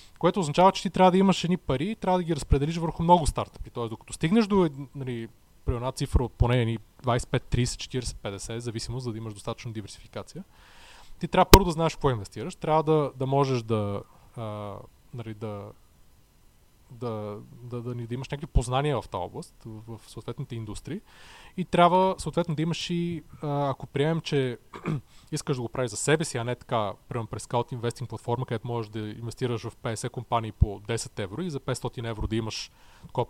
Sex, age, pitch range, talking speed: male, 20-39, 115-155 Hz, 185 wpm